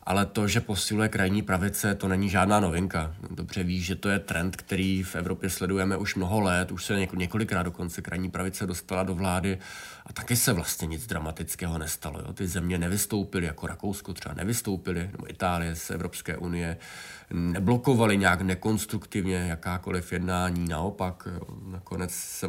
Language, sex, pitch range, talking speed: Czech, male, 90-100 Hz, 165 wpm